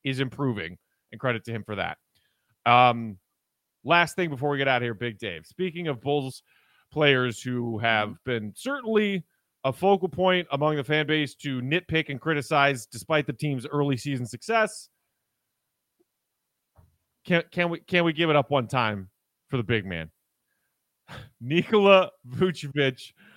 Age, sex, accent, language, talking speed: 30-49, male, American, English, 155 wpm